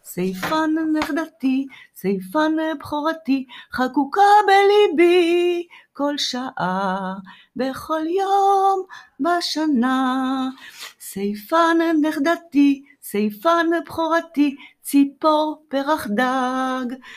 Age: 40-59